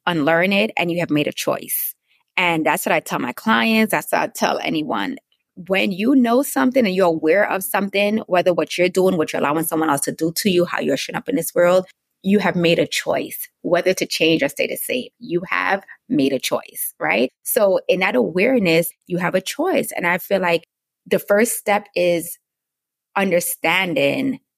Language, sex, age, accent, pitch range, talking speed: English, female, 20-39, American, 170-225 Hz, 205 wpm